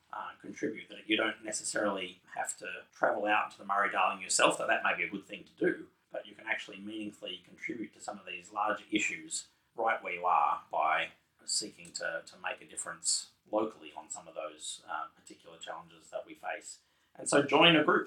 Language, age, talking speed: English, 30-49, 205 wpm